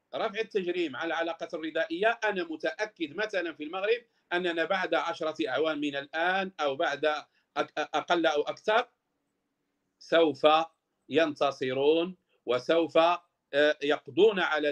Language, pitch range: Arabic, 145-180 Hz